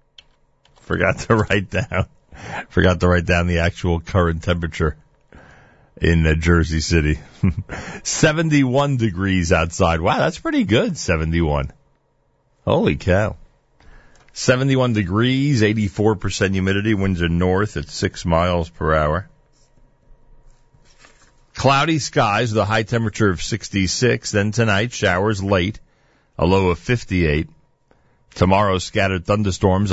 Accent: American